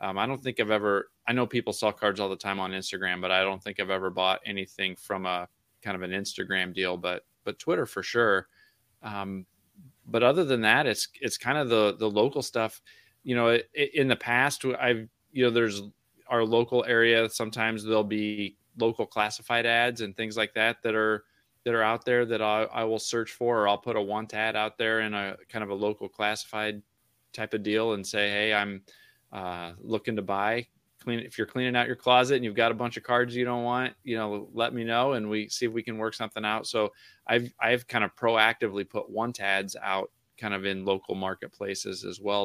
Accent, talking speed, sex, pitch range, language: American, 225 wpm, male, 100-115 Hz, English